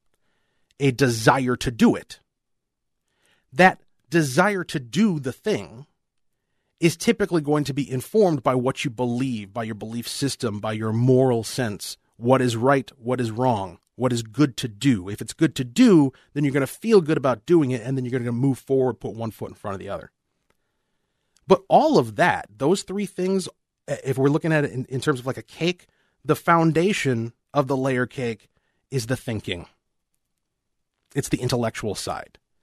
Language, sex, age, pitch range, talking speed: English, male, 30-49, 120-155 Hz, 185 wpm